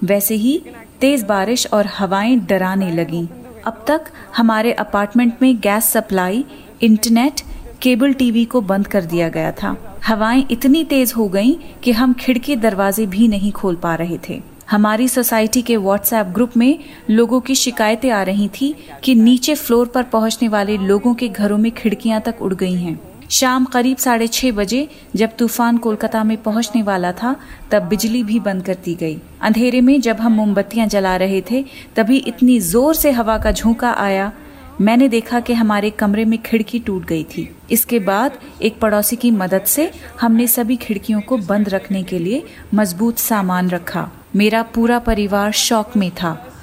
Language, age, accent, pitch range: Hindi, 30-49, native, 205-245 Hz